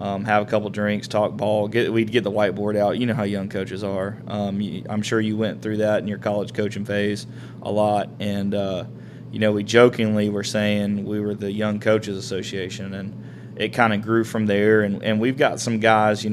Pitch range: 105-115 Hz